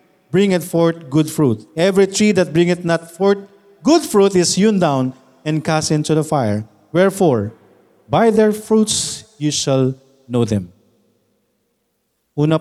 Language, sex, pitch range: Filipino, male, 125-185 Hz